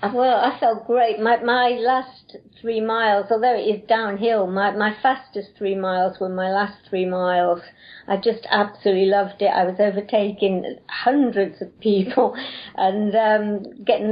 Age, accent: 60-79, British